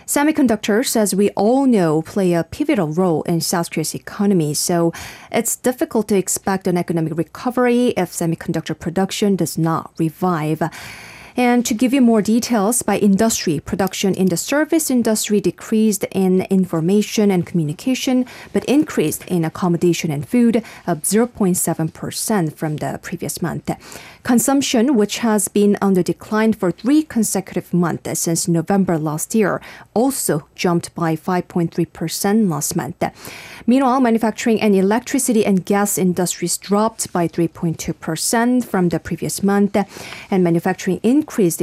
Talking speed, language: 140 wpm, English